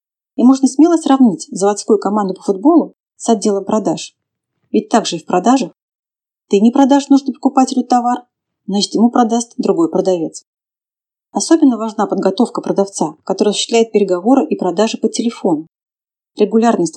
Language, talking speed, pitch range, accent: Russian, 140 wpm, 205-270 Hz, native